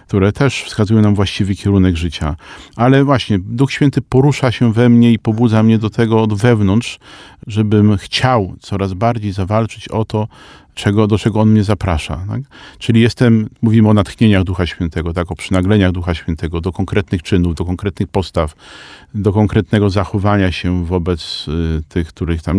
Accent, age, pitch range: native, 40-59, 95-120 Hz